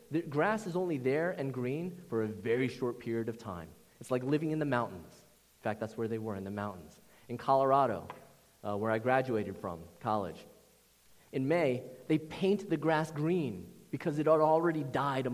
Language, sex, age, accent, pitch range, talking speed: English, male, 30-49, American, 110-150 Hz, 195 wpm